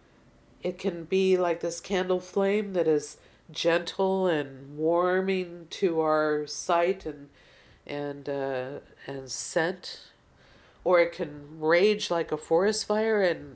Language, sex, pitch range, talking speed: English, female, 150-190 Hz, 130 wpm